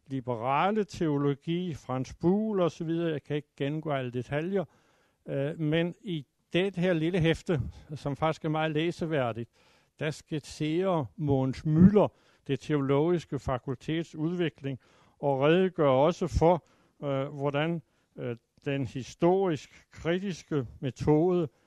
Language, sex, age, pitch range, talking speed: Danish, male, 60-79, 125-165 Hz, 120 wpm